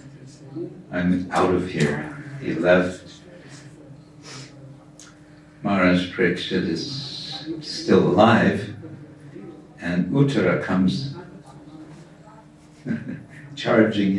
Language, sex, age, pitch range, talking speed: English, male, 60-79, 105-155 Hz, 60 wpm